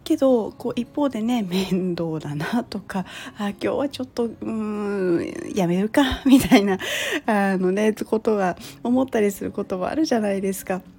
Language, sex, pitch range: Japanese, female, 185-260 Hz